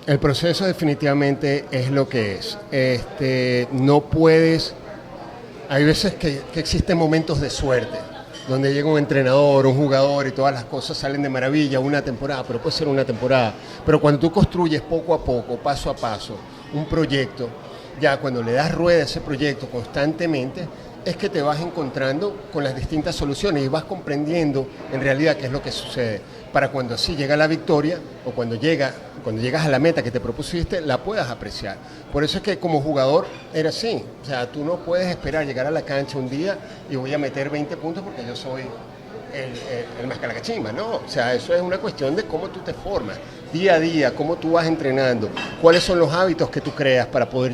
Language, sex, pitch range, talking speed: Spanish, male, 135-160 Hz, 200 wpm